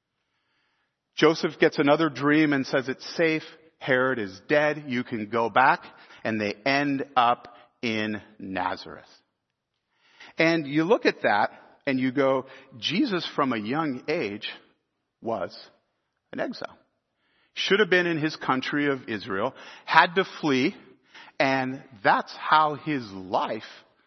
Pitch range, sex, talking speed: 120-165 Hz, male, 130 wpm